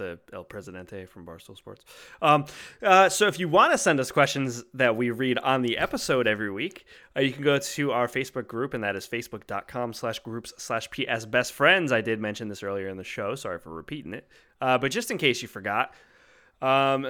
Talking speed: 215 wpm